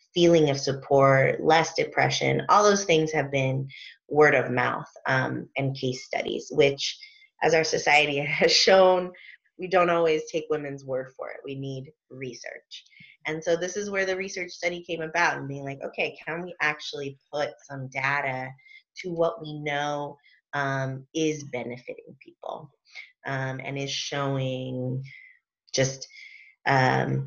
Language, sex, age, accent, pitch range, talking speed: English, female, 20-39, American, 135-160 Hz, 150 wpm